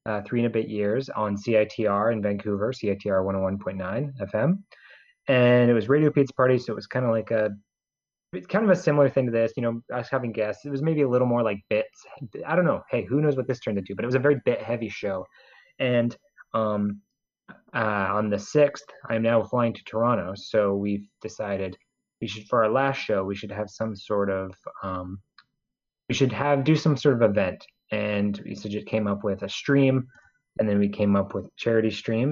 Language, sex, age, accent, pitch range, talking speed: English, male, 30-49, American, 105-130 Hz, 220 wpm